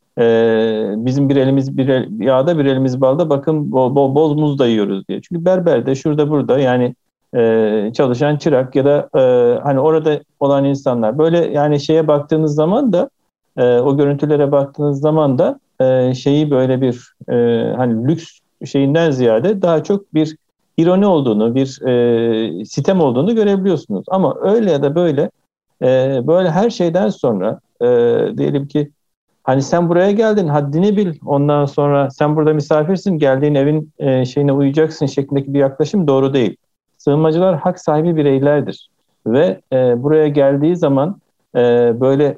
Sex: male